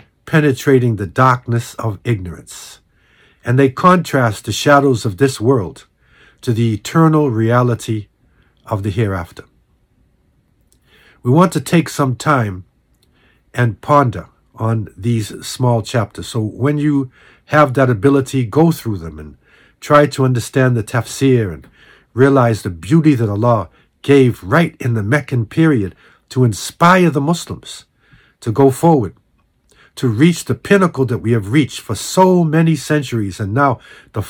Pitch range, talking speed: 110-150 Hz, 140 wpm